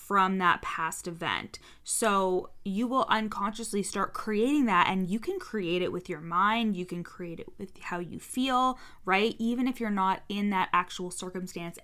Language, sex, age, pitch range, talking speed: English, female, 20-39, 180-220 Hz, 185 wpm